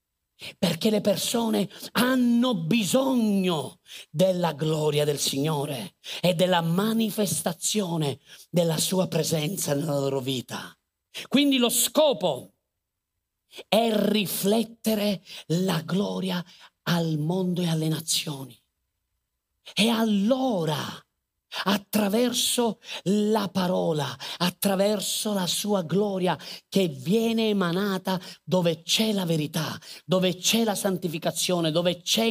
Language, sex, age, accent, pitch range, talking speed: Italian, male, 40-59, native, 150-205 Hz, 95 wpm